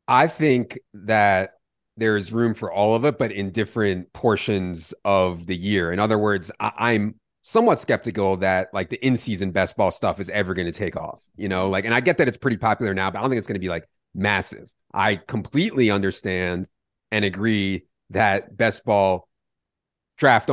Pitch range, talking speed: 95-115 Hz, 195 wpm